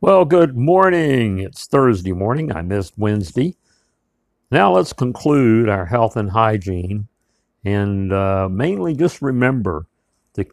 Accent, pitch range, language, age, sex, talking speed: American, 100-125 Hz, English, 60-79, male, 125 wpm